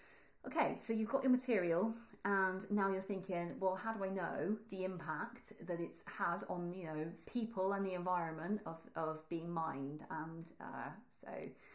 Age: 30-49